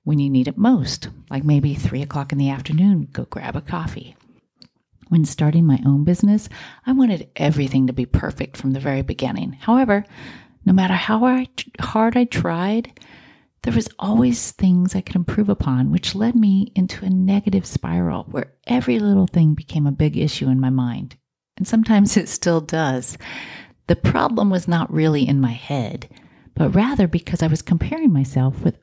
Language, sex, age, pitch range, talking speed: English, female, 40-59, 140-205 Hz, 175 wpm